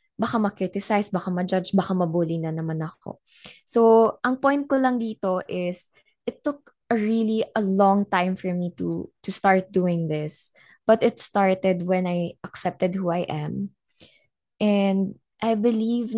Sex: female